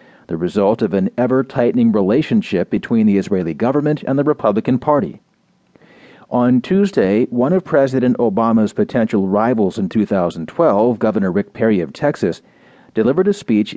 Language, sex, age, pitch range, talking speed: English, male, 40-59, 110-145 Hz, 140 wpm